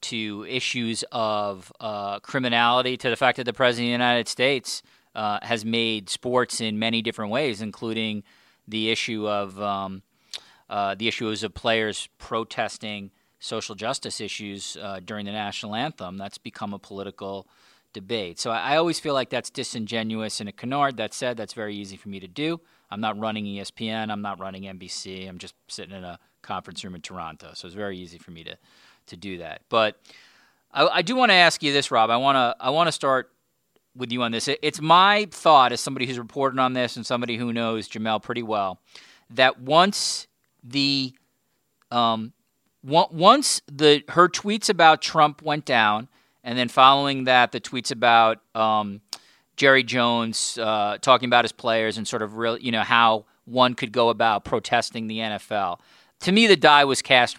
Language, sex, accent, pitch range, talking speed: English, male, American, 105-130 Hz, 185 wpm